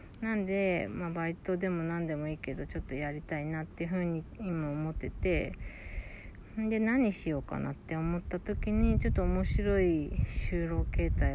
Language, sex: Japanese, female